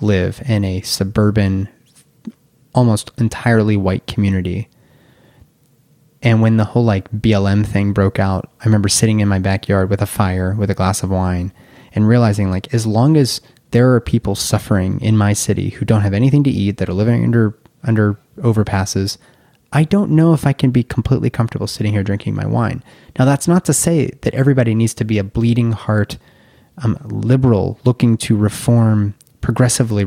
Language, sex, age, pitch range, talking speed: English, male, 20-39, 105-125 Hz, 180 wpm